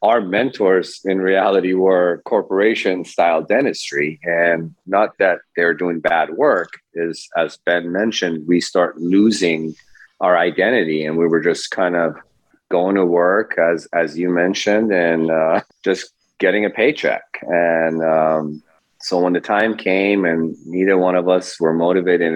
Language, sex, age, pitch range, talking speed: English, male, 30-49, 80-90 Hz, 155 wpm